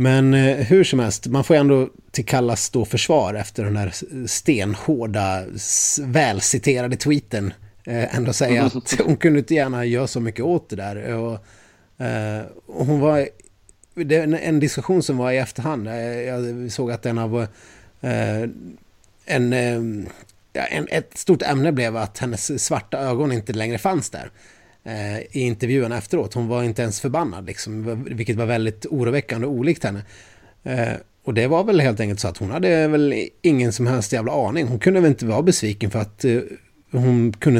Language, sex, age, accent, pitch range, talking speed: Swedish, male, 30-49, native, 110-135 Hz, 170 wpm